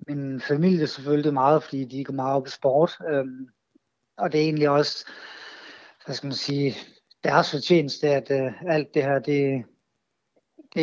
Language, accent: Danish, native